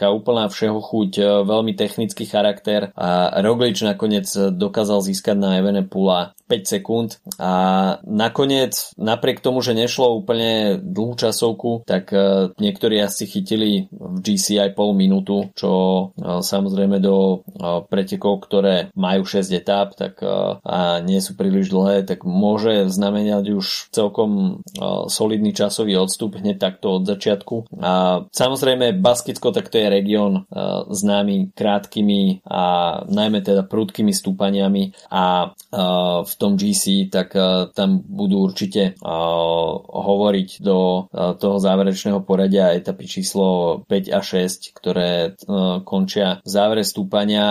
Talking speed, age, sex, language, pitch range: 125 wpm, 20-39, male, Slovak, 95-110 Hz